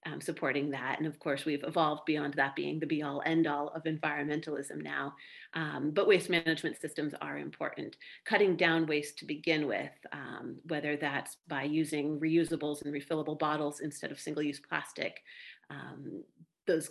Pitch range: 145-175 Hz